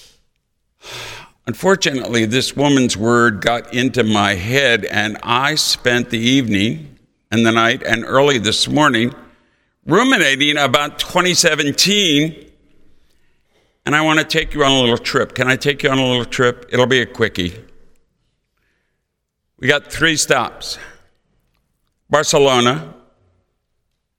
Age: 60-79